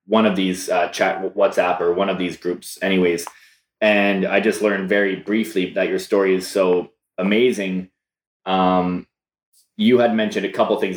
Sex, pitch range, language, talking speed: male, 95-110 Hz, English, 175 wpm